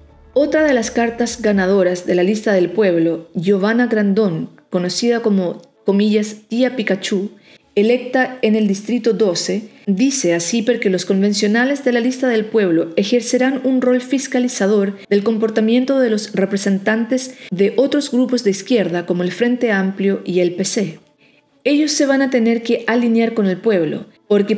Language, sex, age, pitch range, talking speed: Spanish, female, 40-59, 195-245 Hz, 155 wpm